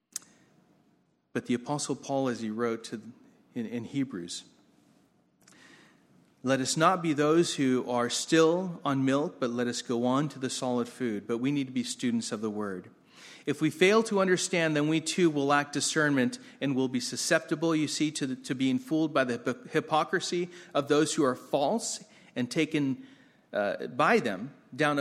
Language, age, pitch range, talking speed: English, 40-59, 135-185 Hz, 180 wpm